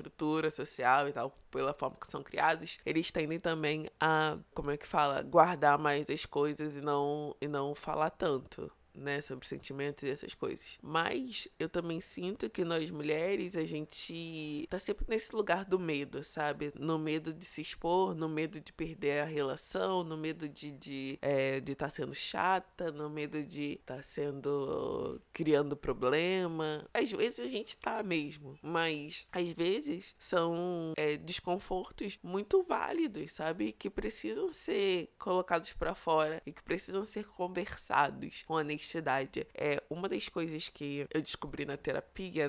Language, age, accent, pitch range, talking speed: Portuguese, 20-39, Brazilian, 145-165 Hz, 160 wpm